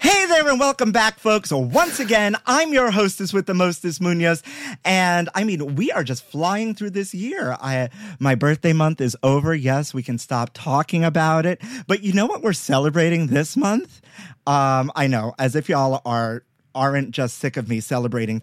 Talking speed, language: 190 wpm, English